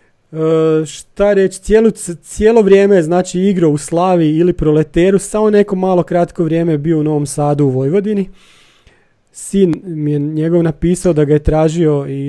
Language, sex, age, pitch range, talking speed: Croatian, male, 30-49, 150-185 Hz, 160 wpm